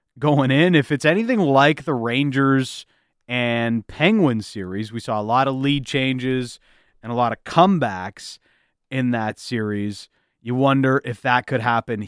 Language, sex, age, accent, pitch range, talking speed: English, male, 30-49, American, 120-140 Hz, 160 wpm